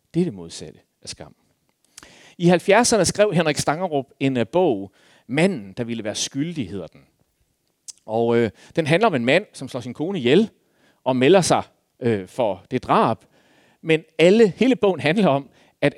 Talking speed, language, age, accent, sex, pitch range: 175 wpm, Danish, 40-59, native, male, 120-175 Hz